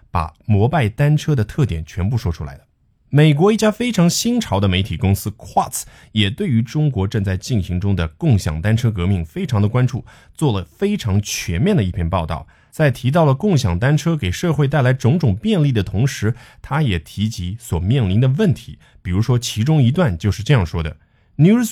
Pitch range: 95-150 Hz